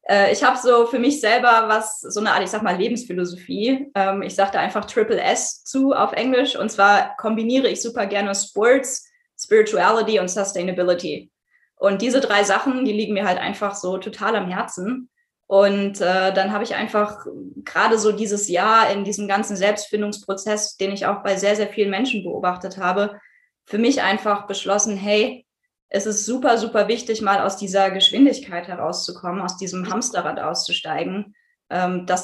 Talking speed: 165 wpm